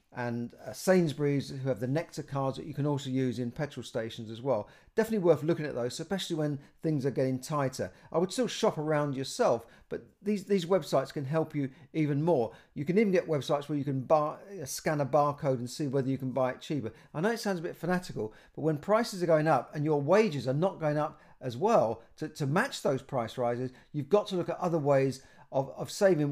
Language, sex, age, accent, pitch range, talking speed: English, male, 50-69, British, 130-160 Hz, 235 wpm